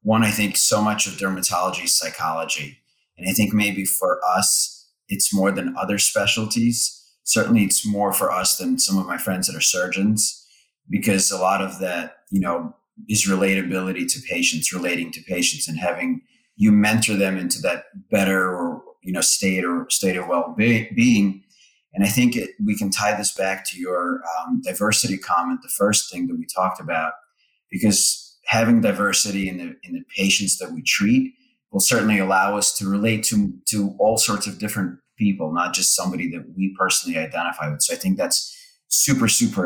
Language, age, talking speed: English, 30-49, 185 wpm